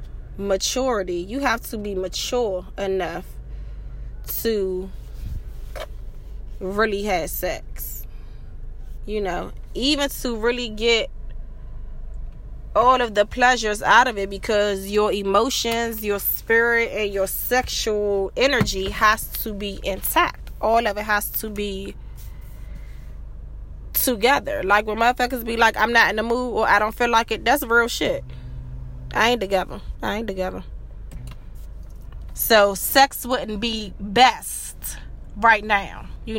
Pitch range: 175-235 Hz